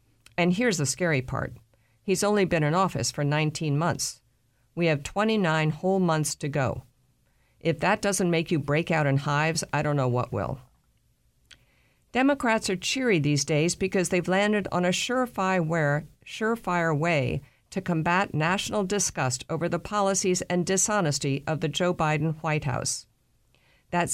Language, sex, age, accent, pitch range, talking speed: English, female, 50-69, American, 145-185 Hz, 155 wpm